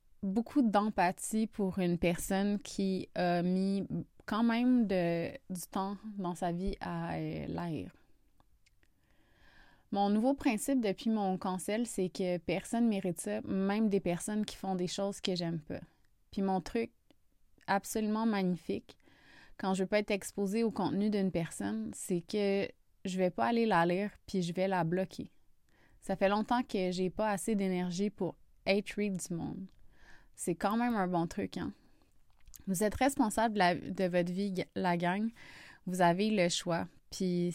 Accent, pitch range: Canadian, 180-215 Hz